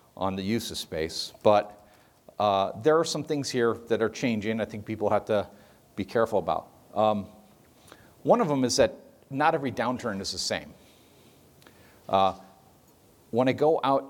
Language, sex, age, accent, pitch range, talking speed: English, male, 50-69, American, 95-125 Hz, 170 wpm